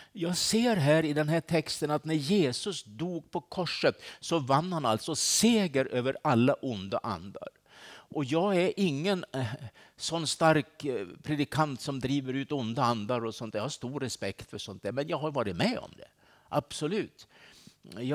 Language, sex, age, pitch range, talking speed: Swedish, male, 60-79, 130-165 Hz, 165 wpm